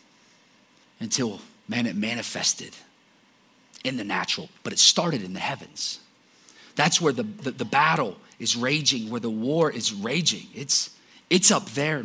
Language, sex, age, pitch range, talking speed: English, male, 30-49, 135-220 Hz, 150 wpm